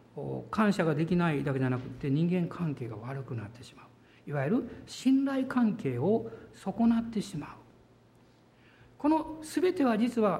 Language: Japanese